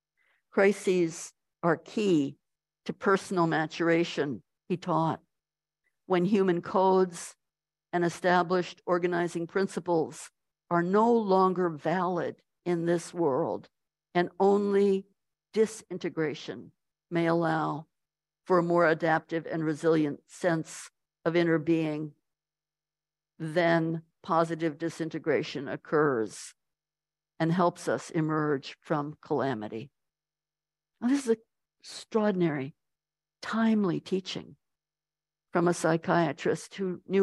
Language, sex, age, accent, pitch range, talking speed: English, female, 60-79, American, 160-185 Hz, 90 wpm